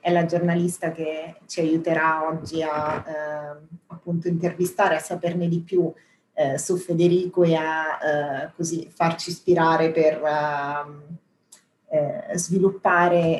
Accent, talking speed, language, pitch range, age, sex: native, 120 wpm, Italian, 155-185 Hz, 30-49, female